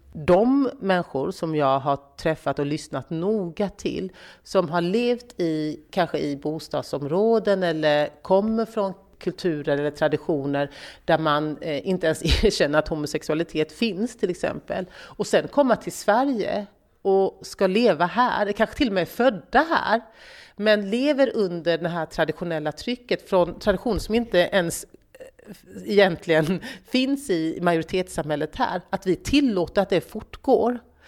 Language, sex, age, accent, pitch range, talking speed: Swedish, female, 40-59, native, 155-220 Hz, 140 wpm